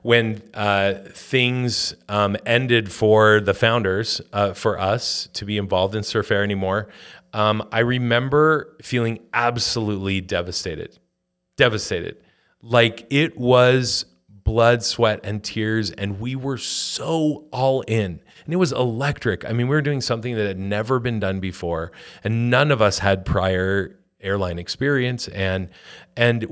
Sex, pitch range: male, 100-120 Hz